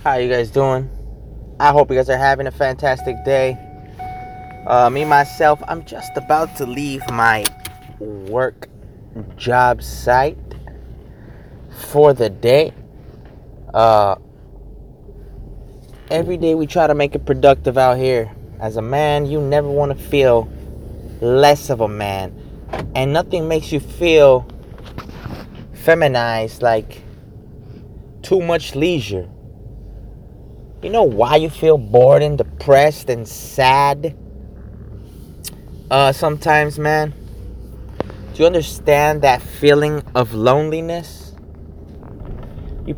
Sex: male